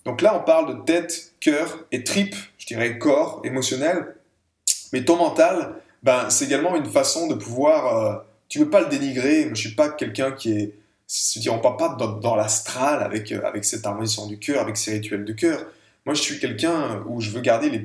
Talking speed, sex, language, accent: 220 wpm, male, French, French